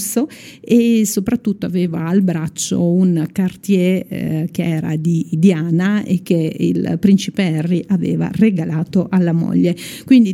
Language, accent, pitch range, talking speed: Italian, native, 175-215 Hz, 130 wpm